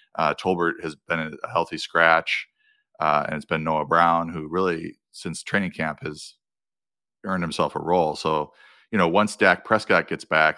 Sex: male